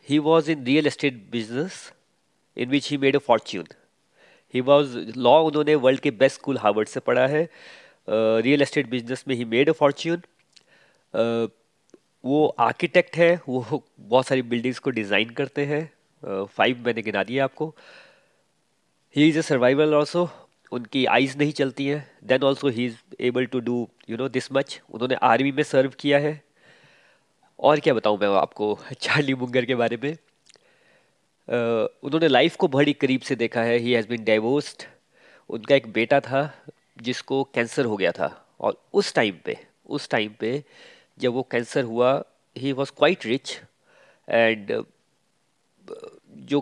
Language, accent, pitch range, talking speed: Hindi, native, 125-150 Hz, 160 wpm